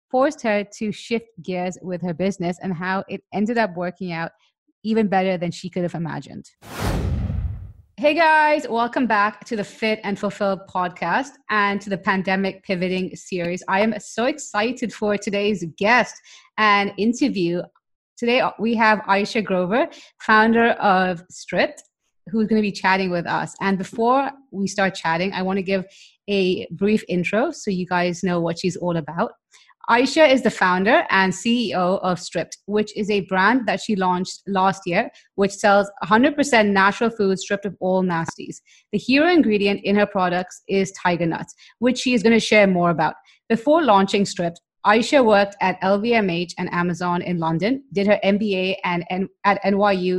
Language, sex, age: English, female, 30-49